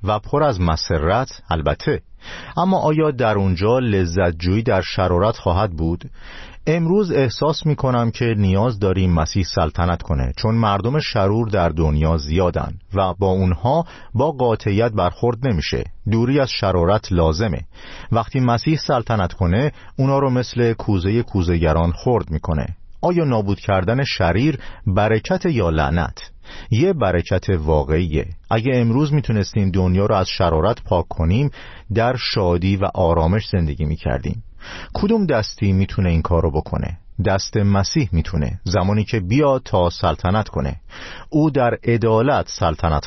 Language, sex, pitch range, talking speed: Persian, male, 90-120 Hz, 130 wpm